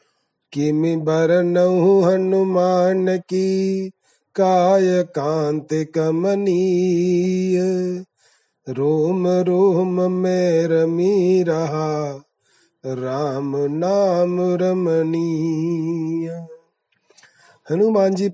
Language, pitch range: Hindi, 160-190 Hz